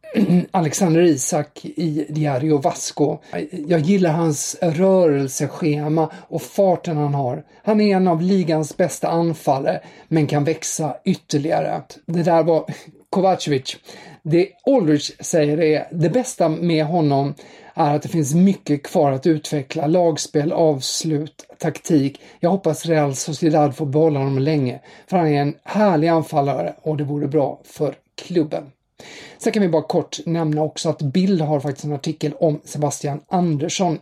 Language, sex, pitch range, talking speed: English, male, 150-175 Hz, 150 wpm